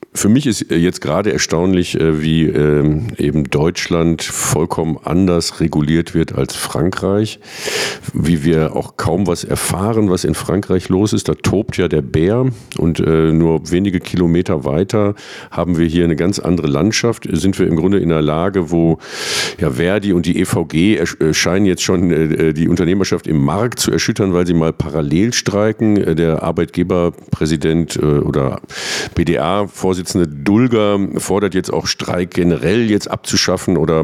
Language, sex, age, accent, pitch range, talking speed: German, male, 50-69, German, 85-105 Hz, 150 wpm